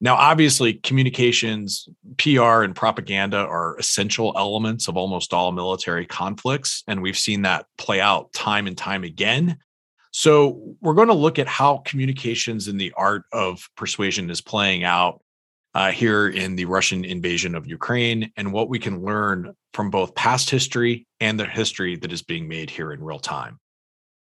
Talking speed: 170 wpm